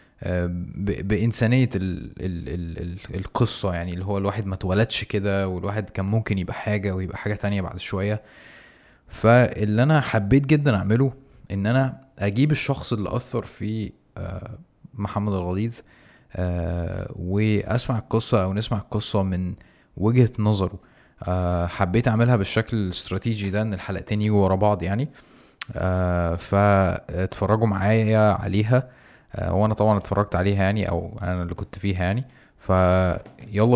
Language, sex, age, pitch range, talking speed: Arabic, male, 20-39, 95-115 Hz, 125 wpm